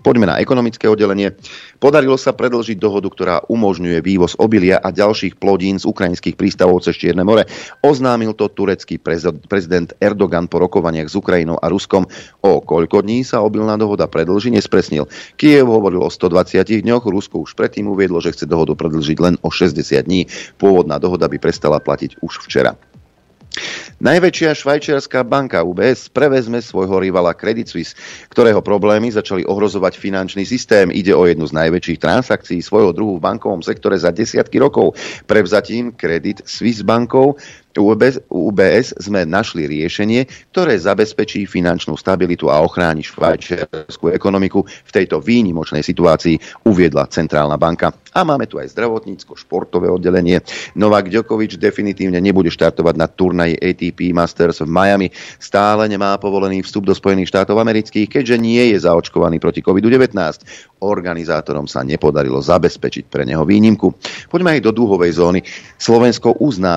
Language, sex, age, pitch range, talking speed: Slovak, male, 40-59, 85-110 Hz, 145 wpm